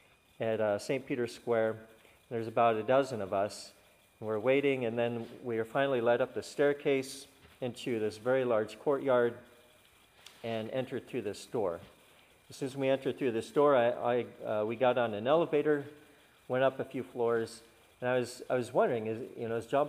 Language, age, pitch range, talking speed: English, 50-69, 110-140 Hz, 195 wpm